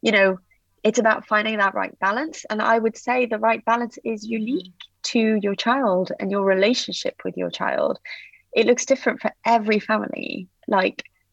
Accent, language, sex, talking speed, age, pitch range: British, English, female, 175 wpm, 20-39, 180-235 Hz